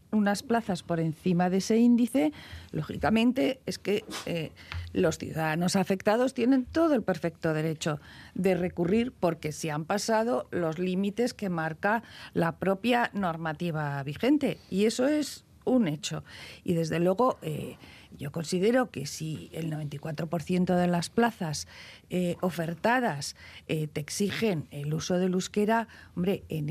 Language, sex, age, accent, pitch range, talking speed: Spanish, female, 50-69, Spanish, 160-210 Hz, 140 wpm